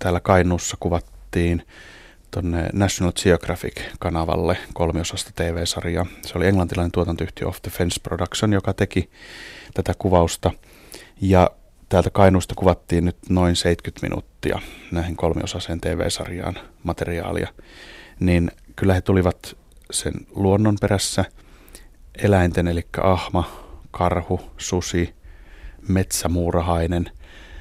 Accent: native